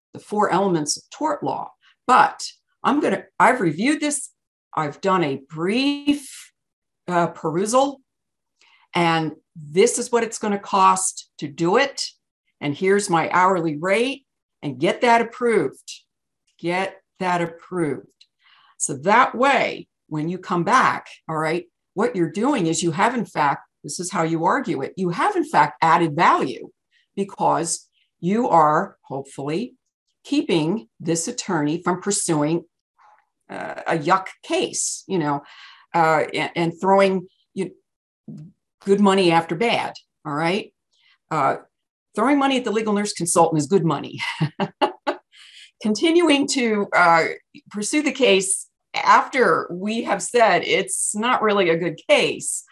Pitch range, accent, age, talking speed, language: 165-230 Hz, American, 50-69, 140 wpm, English